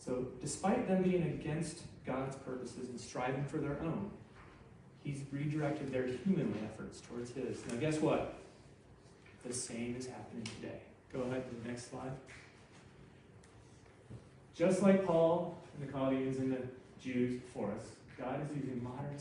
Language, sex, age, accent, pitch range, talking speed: English, male, 30-49, American, 125-160 Hz, 150 wpm